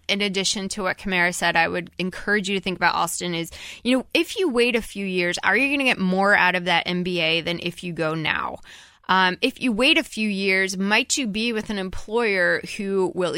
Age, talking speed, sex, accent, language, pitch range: 20-39, 240 wpm, female, American, English, 180-215 Hz